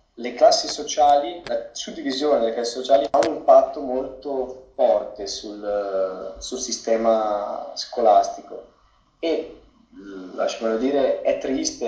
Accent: native